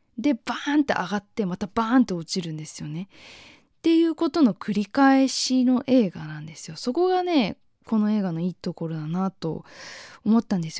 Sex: female